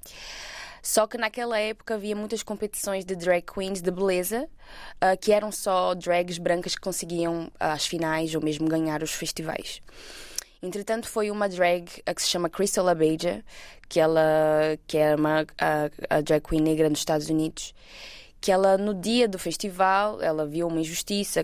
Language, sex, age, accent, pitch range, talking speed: Portuguese, female, 20-39, Brazilian, 165-205 Hz, 160 wpm